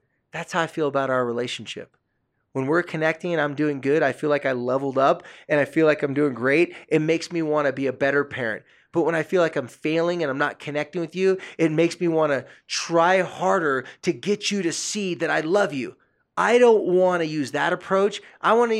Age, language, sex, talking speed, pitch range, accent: 20-39, English, male, 240 wpm, 145-180 Hz, American